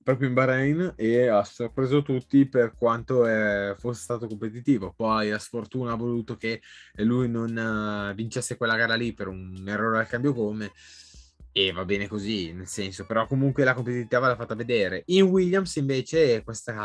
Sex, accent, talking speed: male, native, 165 wpm